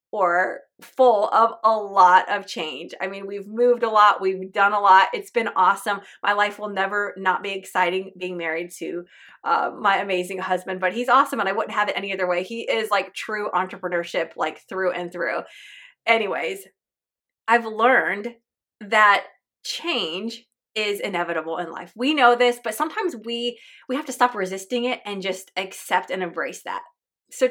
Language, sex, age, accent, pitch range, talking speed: English, female, 20-39, American, 185-245 Hz, 180 wpm